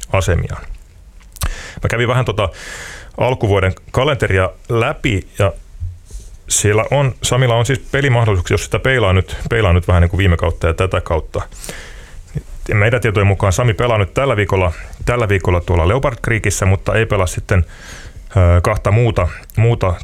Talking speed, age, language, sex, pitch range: 145 wpm, 30-49, Finnish, male, 85-115 Hz